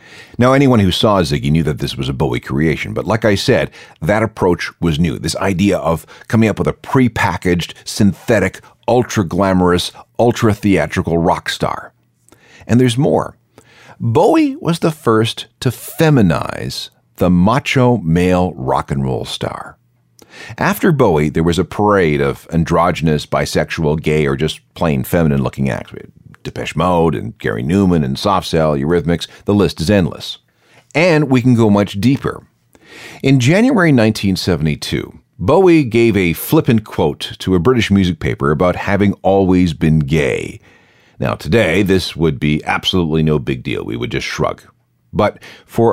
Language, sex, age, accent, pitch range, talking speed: English, male, 40-59, American, 80-115 Hz, 150 wpm